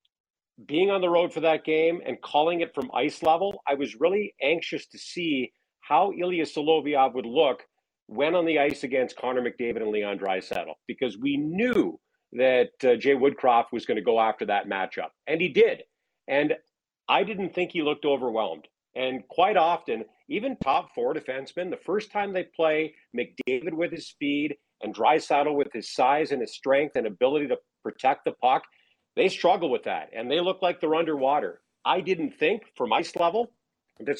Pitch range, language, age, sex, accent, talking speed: 130-175 Hz, English, 50-69, male, American, 185 wpm